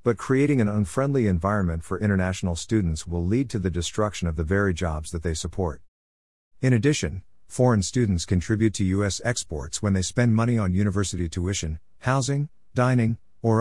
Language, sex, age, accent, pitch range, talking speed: English, male, 50-69, American, 90-115 Hz, 170 wpm